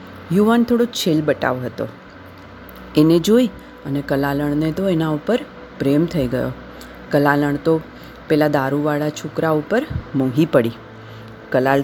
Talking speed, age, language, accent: 90 wpm, 30-49, Gujarati, native